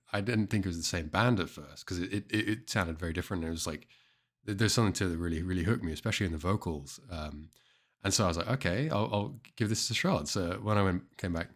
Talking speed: 270 wpm